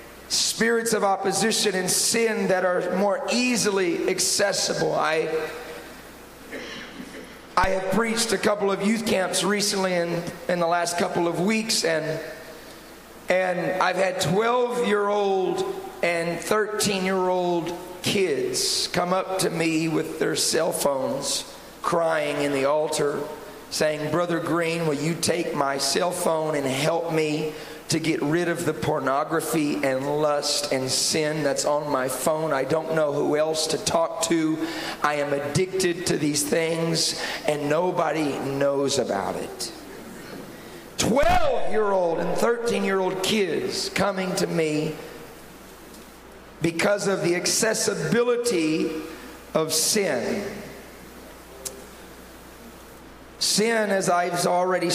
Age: 40-59